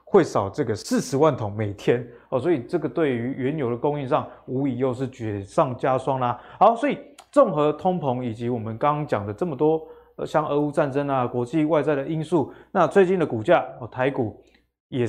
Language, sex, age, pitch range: Chinese, male, 20-39, 125-170 Hz